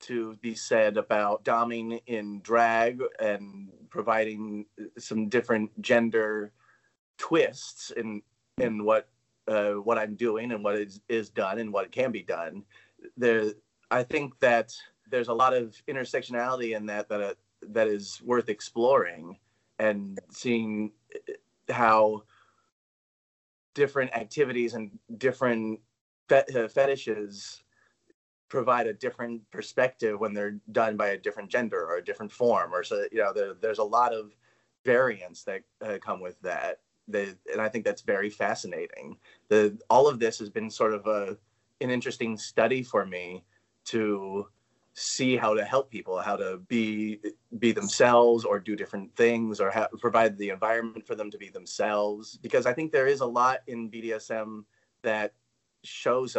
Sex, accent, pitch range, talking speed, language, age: male, American, 105-120 Hz, 150 wpm, English, 30-49